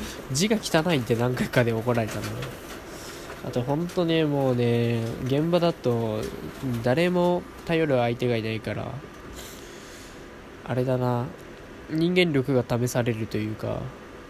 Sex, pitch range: male, 115-150 Hz